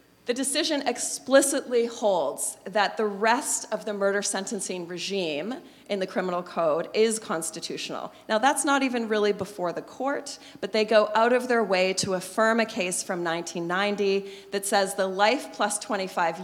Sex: female